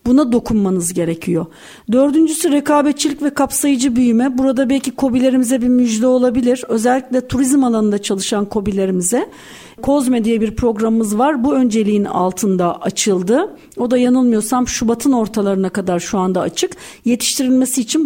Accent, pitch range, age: native, 215-265 Hz, 50-69